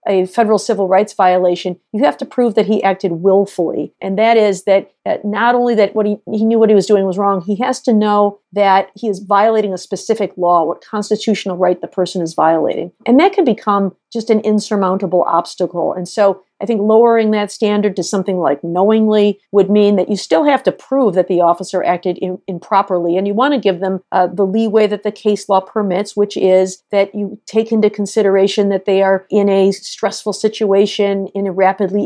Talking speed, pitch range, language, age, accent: 210 wpm, 185-215 Hz, English, 50-69, American